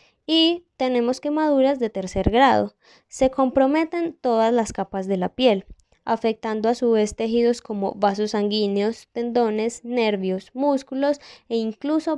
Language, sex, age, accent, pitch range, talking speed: Spanish, female, 10-29, Colombian, 210-250 Hz, 135 wpm